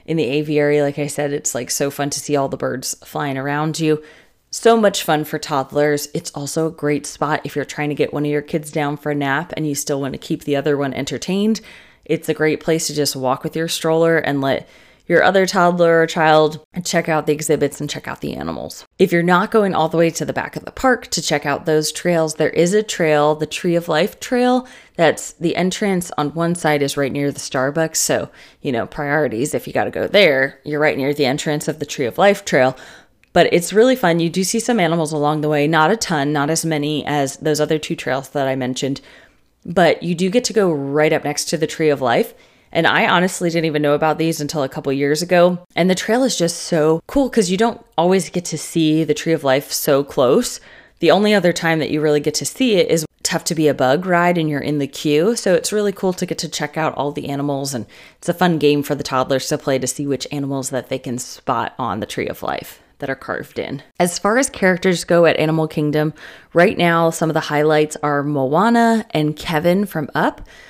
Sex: female